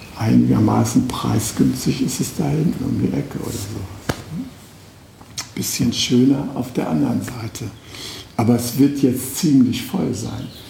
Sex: male